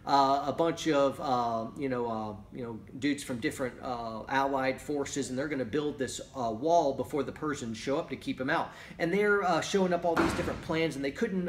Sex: male